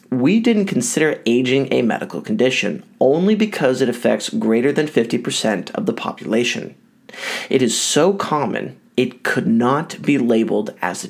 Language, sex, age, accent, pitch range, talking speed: English, male, 30-49, American, 115-185 Hz, 150 wpm